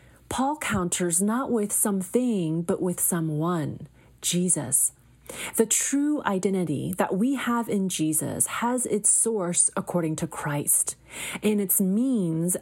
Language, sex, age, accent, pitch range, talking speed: English, female, 30-49, American, 165-225 Hz, 125 wpm